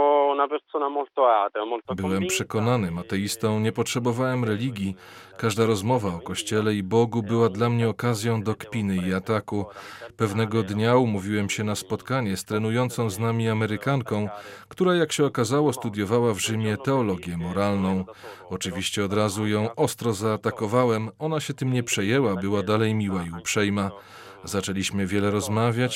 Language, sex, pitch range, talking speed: Polish, male, 100-125 Hz, 135 wpm